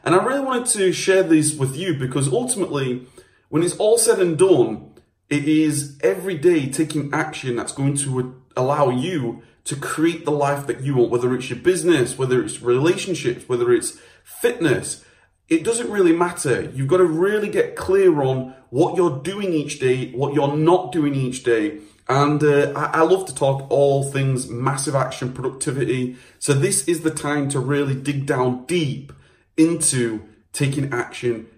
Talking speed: 175 wpm